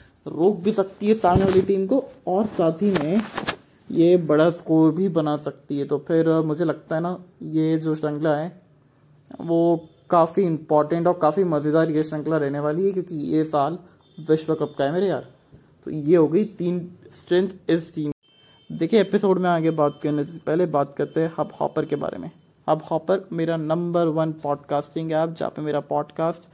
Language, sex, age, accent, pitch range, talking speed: English, male, 20-39, Indian, 150-170 Hz, 140 wpm